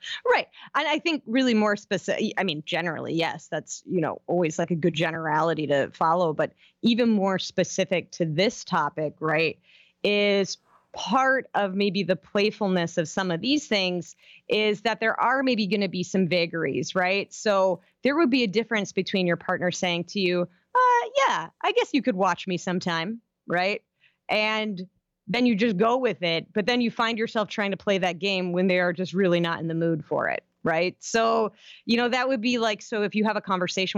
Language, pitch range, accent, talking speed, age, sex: English, 175-225 Hz, American, 205 wpm, 30-49, female